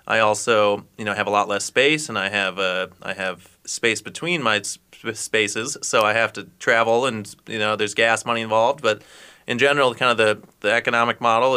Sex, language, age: male, English, 30-49